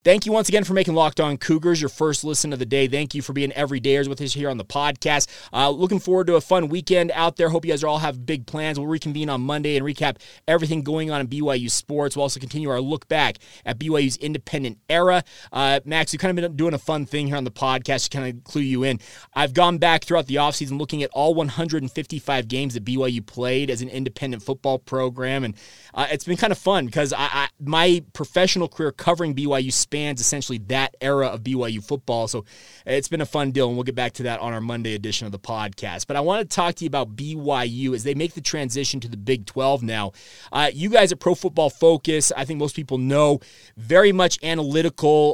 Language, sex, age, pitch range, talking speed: English, male, 20-39, 130-165 Hz, 240 wpm